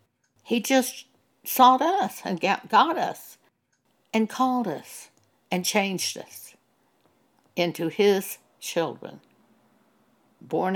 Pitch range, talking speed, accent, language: 160-220 Hz, 95 wpm, American, English